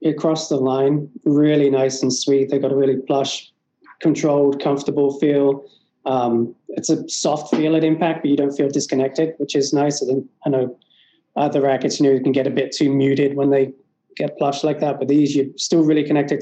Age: 20-39